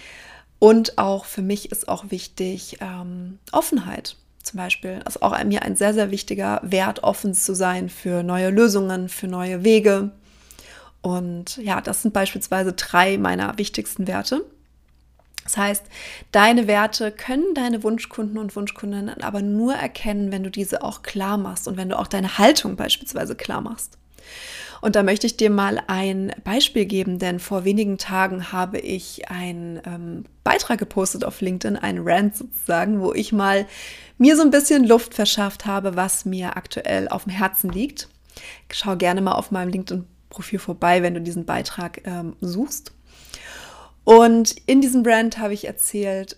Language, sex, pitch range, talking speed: German, female, 185-220 Hz, 165 wpm